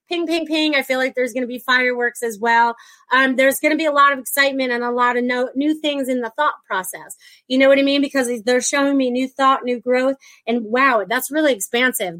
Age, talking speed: 30-49, 245 wpm